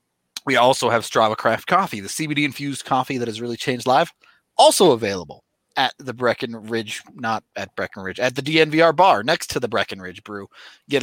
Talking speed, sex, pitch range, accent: 175 wpm, male, 120-165 Hz, American